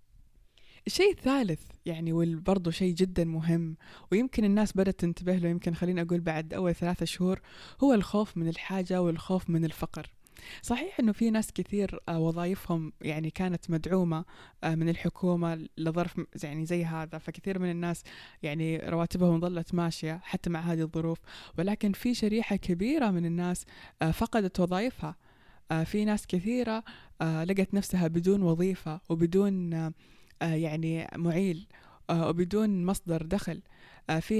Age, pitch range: 20-39, 165-195 Hz